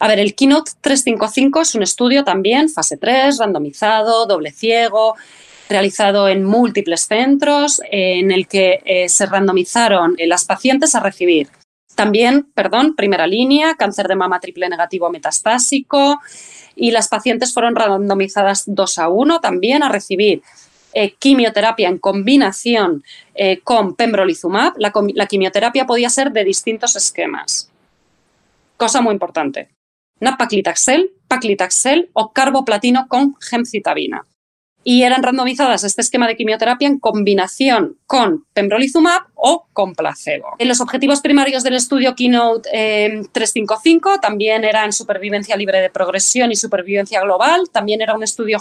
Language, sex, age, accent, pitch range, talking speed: Spanish, female, 20-39, Spanish, 195-260 Hz, 135 wpm